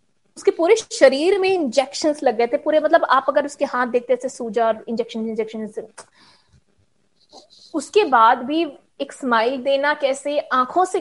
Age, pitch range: 20-39, 220-275 Hz